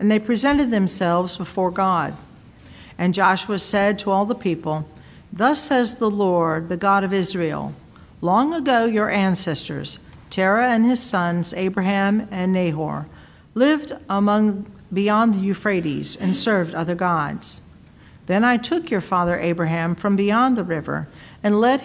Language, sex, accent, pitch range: English, female, American, 180-230 Hz